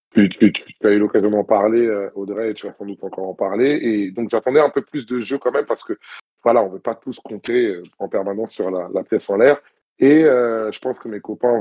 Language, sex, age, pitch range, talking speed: French, male, 20-39, 105-125 Hz, 265 wpm